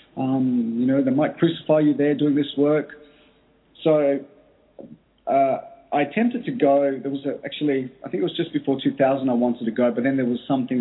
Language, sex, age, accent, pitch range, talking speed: English, male, 30-49, Australian, 120-140 Hz, 200 wpm